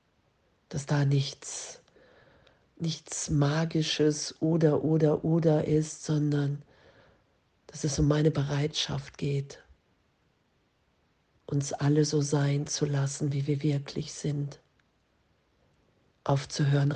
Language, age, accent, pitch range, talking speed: German, 50-69, German, 145-155 Hz, 95 wpm